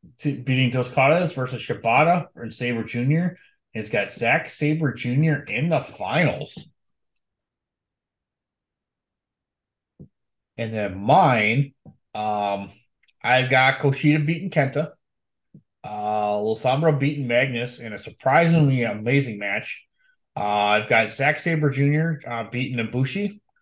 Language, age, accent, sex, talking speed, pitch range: English, 20-39, American, male, 105 wpm, 115-155 Hz